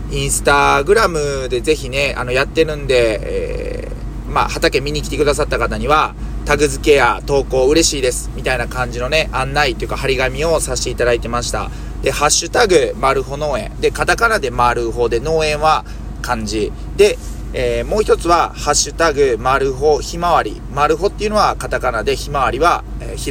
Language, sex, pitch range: Japanese, male, 125-200 Hz